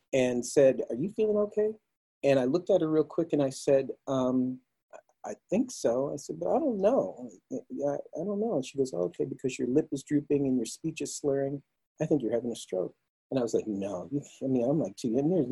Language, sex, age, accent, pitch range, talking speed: English, male, 40-59, American, 115-135 Hz, 235 wpm